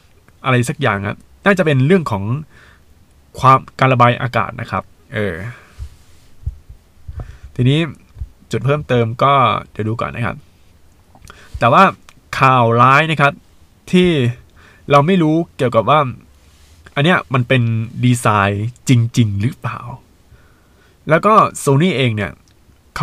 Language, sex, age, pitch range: Thai, male, 20-39, 90-130 Hz